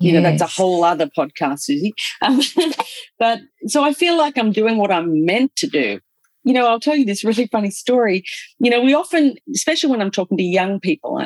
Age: 40-59